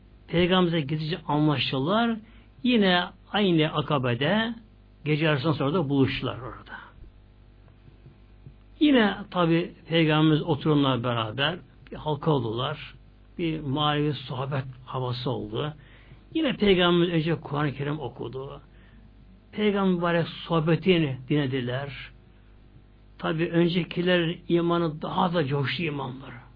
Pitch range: 120-180 Hz